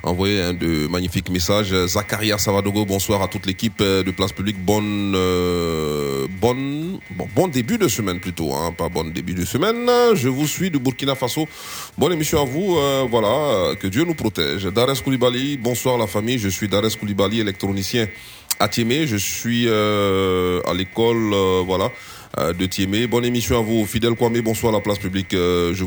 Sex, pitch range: male, 100-120 Hz